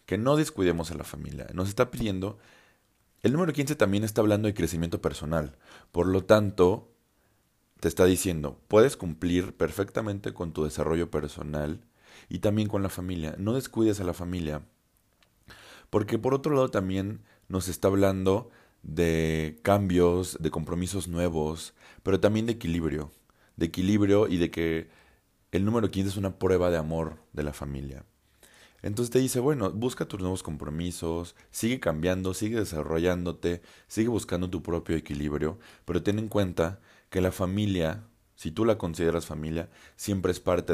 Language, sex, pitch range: Spanish, male, 80-100 Hz